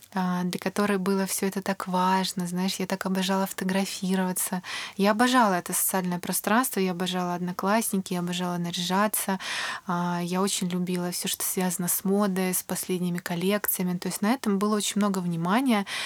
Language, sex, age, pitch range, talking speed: Russian, female, 20-39, 180-205 Hz, 155 wpm